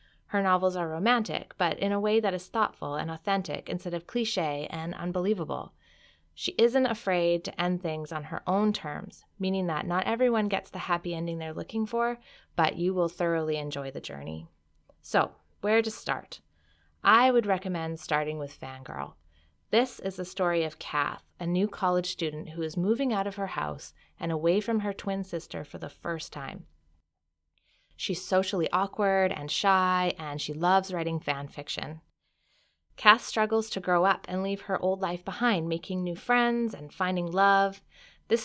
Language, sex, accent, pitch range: English, female, American, 160-195 Hz